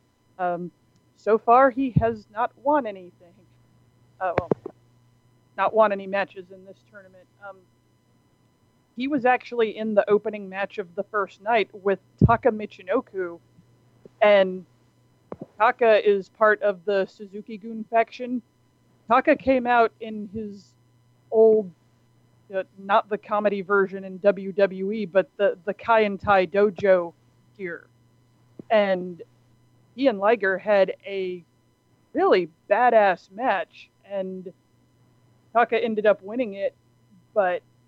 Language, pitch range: English, 180-220 Hz